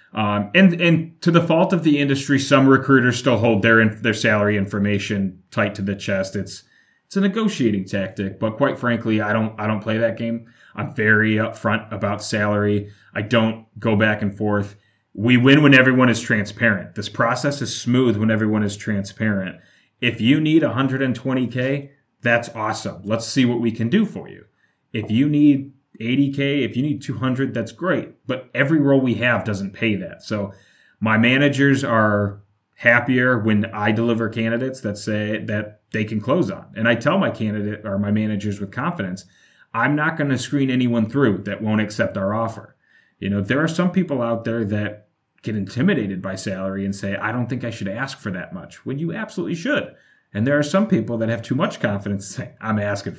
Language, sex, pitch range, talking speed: English, male, 105-135 Hz, 195 wpm